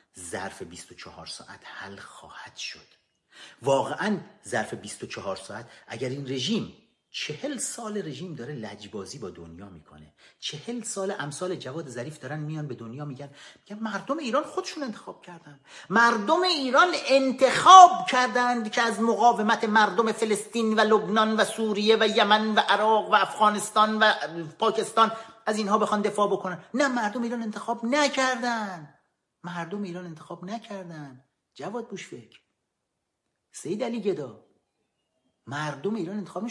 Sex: male